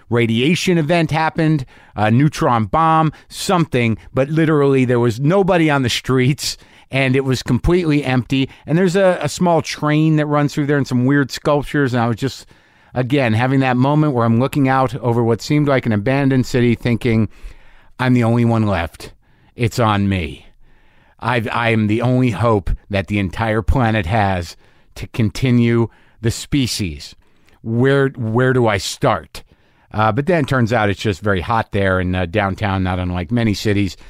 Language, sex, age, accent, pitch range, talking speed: English, male, 50-69, American, 110-145 Hz, 175 wpm